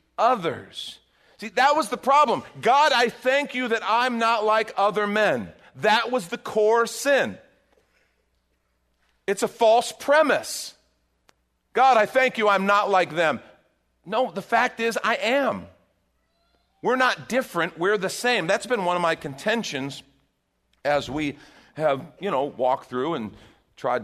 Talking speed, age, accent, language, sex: 150 wpm, 40-59, American, English, male